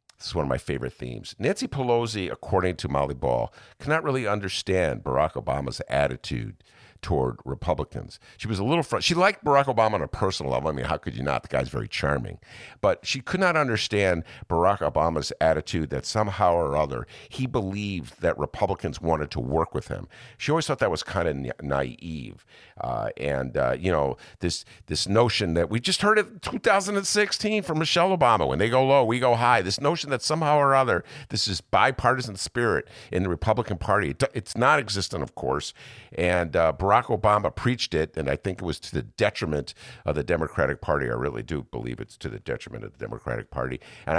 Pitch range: 85-130 Hz